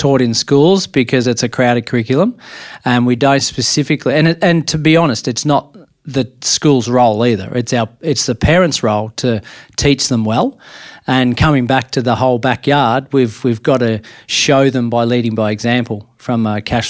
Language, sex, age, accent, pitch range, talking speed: English, male, 40-59, Australian, 115-140 Hz, 190 wpm